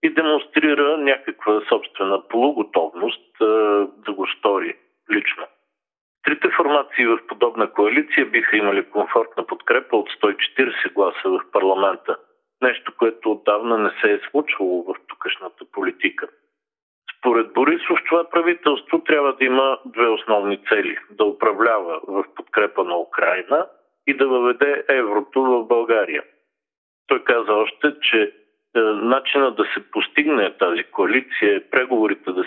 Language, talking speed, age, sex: Bulgarian, 130 wpm, 50-69, male